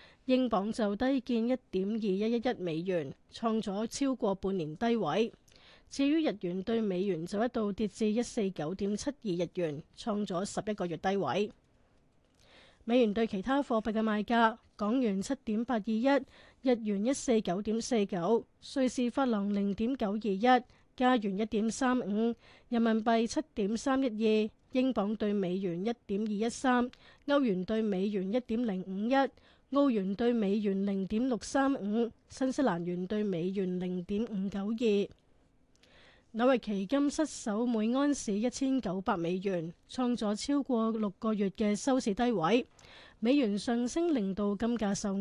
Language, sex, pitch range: Chinese, female, 200-245 Hz